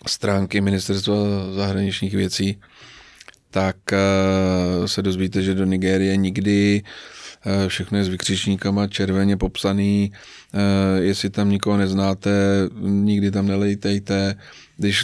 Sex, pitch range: male, 95-100 Hz